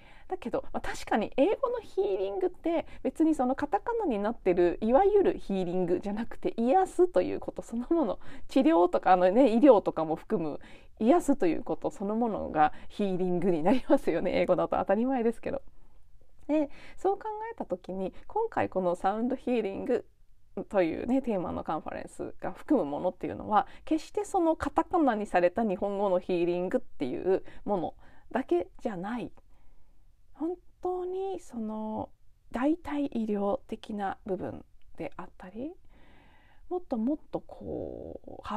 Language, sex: Japanese, female